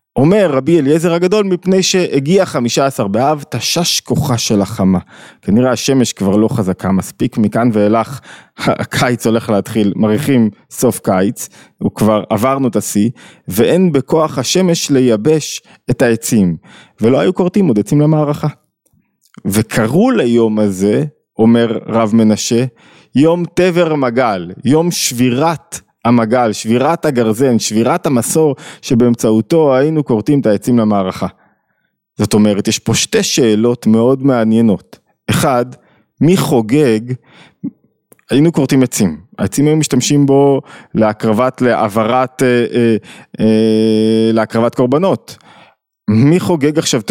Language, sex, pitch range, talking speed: Hebrew, male, 110-150 Hz, 115 wpm